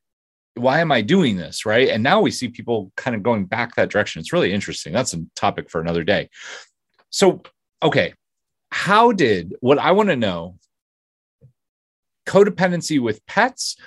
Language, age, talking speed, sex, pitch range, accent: English, 30-49, 165 wpm, male, 95-155 Hz, American